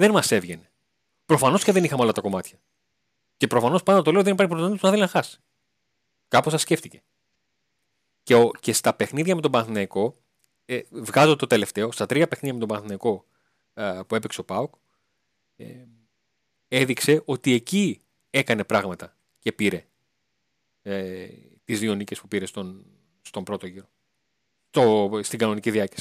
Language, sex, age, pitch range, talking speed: Greek, male, 30-49, 110-155 Hz, 155 wpm